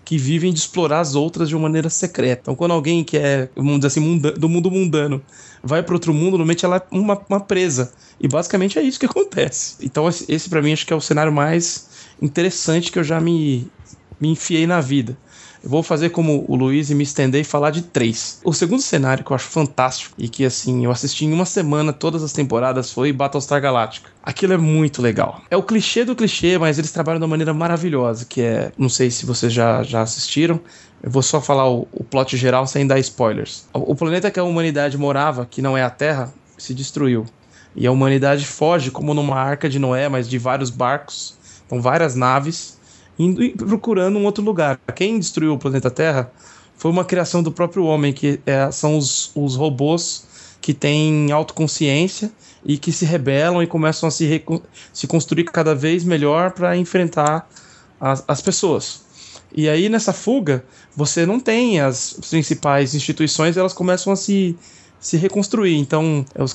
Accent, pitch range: Brazilian, 135-170 Hz